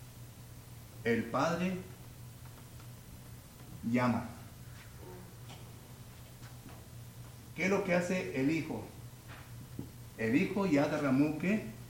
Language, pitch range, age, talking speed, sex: English, 115-140 Hz, 60-79, 70 wpm, male